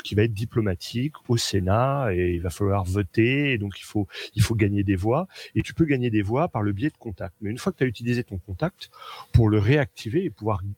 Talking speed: 250 wpm